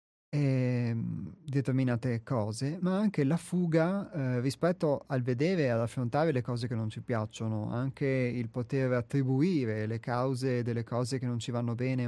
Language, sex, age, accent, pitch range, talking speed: Italian, male, 30-49, native, 120-160 Hz, 165 wpm